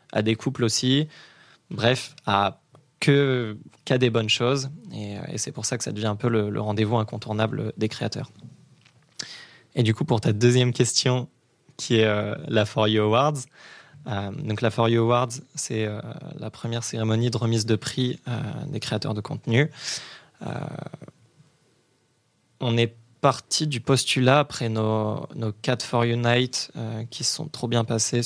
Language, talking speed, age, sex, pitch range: French, 170 wpm, 20-39, male, 110-135 Hz